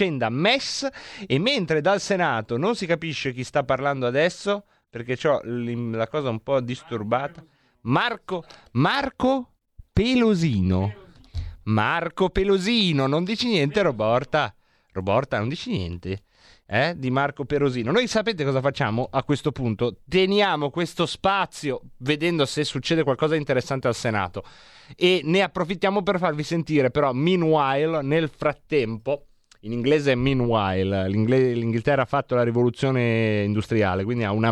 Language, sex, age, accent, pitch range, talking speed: Italian, male, 30-49, native, 120-175 Hz, 135 wpm